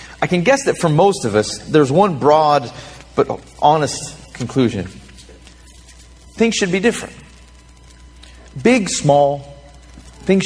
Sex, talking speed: male, 120 wpm